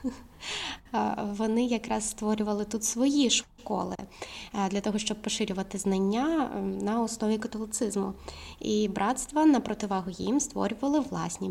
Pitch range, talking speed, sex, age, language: 200-230 Hz, 110 wpm, female, 20-39, Ukrainian